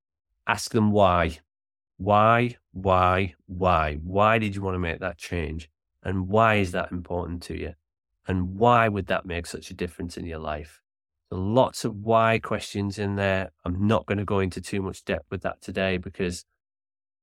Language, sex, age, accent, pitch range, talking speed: English, male, 30-49, British, 90-105 Hz, 180 wpm